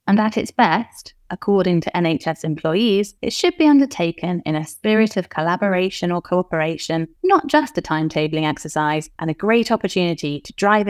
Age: 20-39